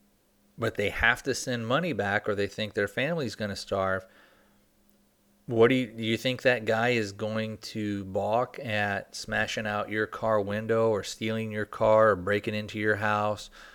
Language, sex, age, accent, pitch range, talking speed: English, male, 40-59, American, 105-115 Hz, 185 wpm